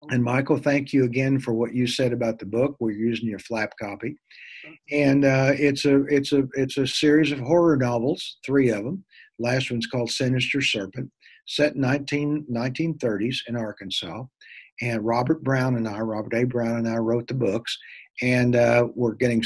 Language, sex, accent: English, male, American